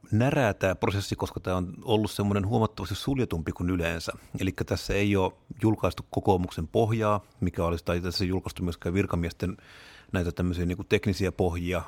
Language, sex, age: Finnish, male, 30-49